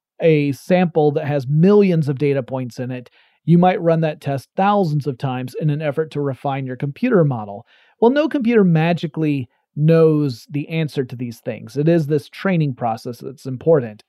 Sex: male